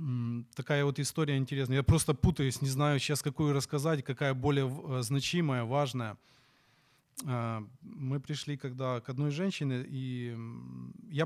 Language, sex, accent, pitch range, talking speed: Ukrainian, male, native, 125-150 Hz, 125 wpm